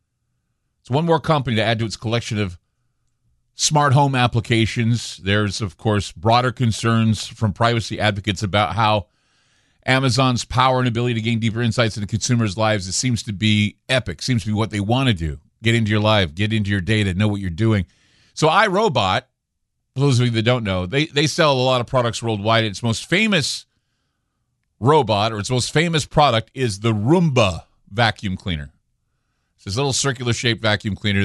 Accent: American